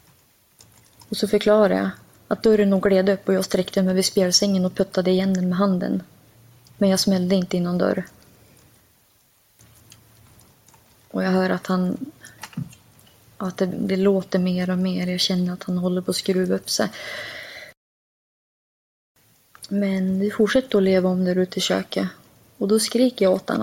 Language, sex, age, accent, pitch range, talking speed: Swedish, female, 20-39, native, 150-205 Hz, 170 wpm